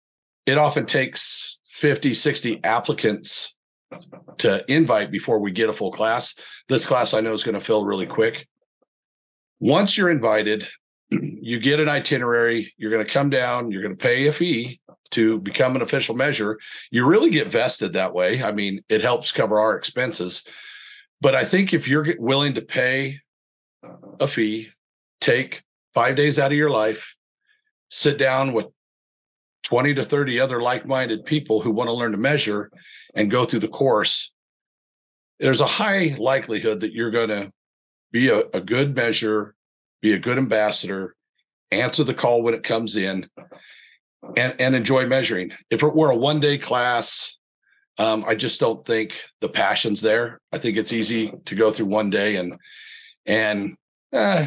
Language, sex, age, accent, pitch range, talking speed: English, male, 50-69, American, 110-145 Hz, 165 wpm